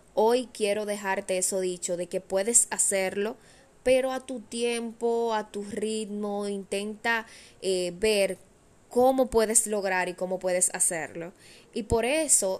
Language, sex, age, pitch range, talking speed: Spanish, female, 20-39, 195-250 Hz, 140 wpm